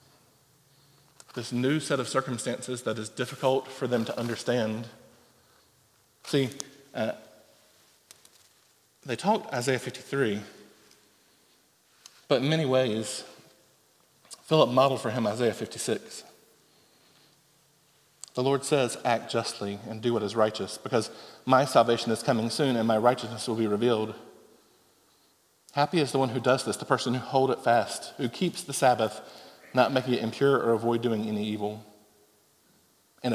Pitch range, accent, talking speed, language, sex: 115-140 Hz, American, 140 wpm, English, male